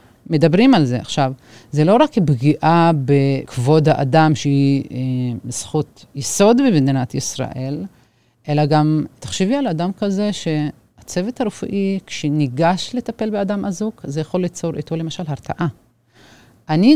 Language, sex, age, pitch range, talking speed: Hebrew, female, 30-49, 140-195 Hz, 125 wpm